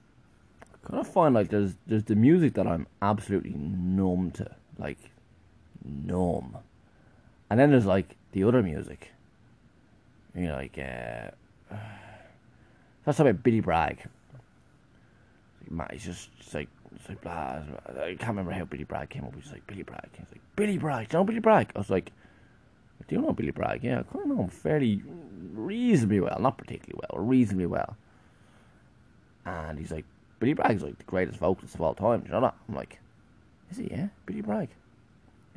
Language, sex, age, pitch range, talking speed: English, male, 20-39, 85-110 Hz, 180 wpm